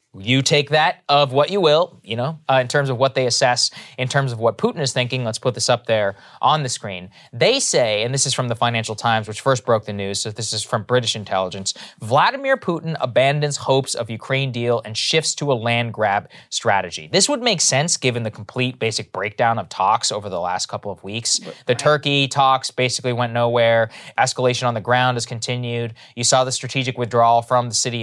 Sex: male